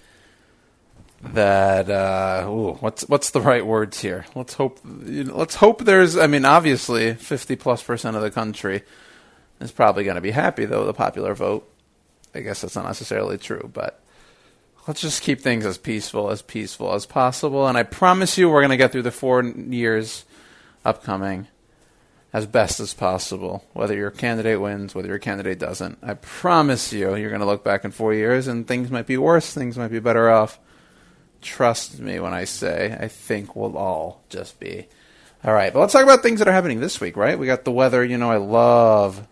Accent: American